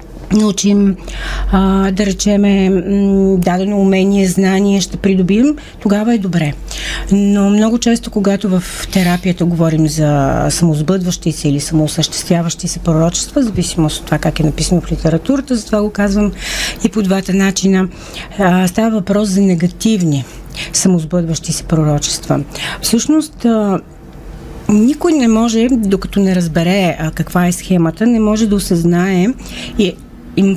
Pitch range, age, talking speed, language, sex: 170-215 Hz, 40-59, 135 wpm, Bulgarian, female